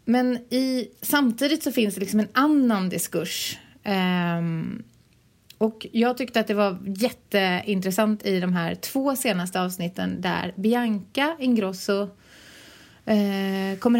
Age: 30-49